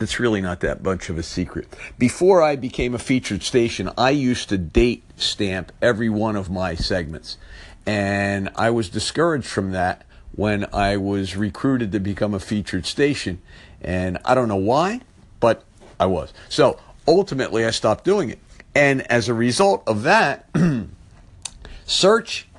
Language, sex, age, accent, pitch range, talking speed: English, male, 50-69, American, 95-115 Hz, 160 wpm